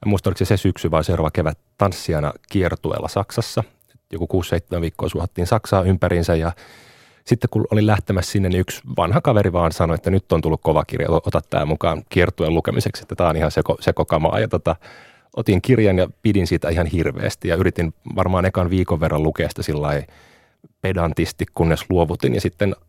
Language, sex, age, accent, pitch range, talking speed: Finnish, male, 30-49, native, 80-100 Hz, 170 wpm